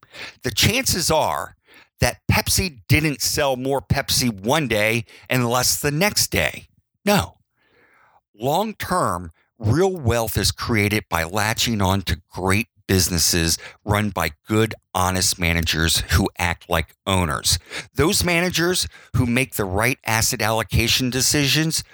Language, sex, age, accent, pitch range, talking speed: English, male, 50-69, American, 95-125 Hz, 125 wpm